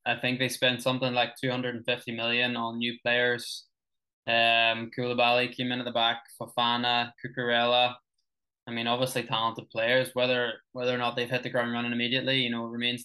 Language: English